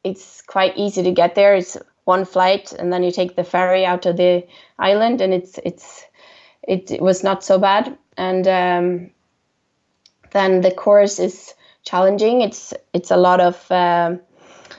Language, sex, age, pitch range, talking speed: English, female, 20-39, 180-195 Hz, 160 wpm